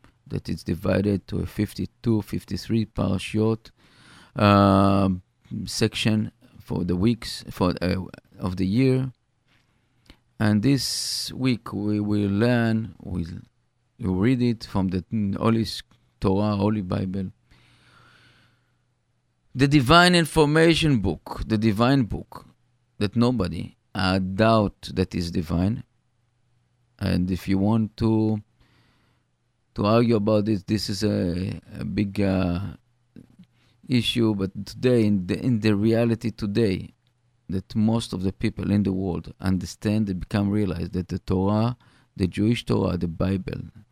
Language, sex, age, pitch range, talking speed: English, male, 40-59, 95-120 Hz, 125 wpm